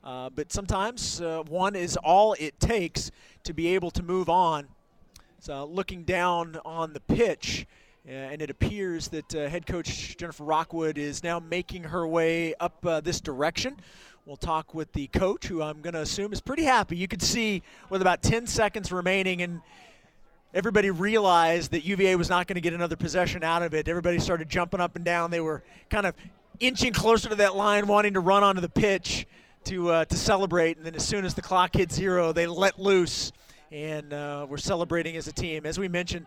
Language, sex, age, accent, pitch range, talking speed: English, male, 40-59, American, 160-190 Hz, 205 wpm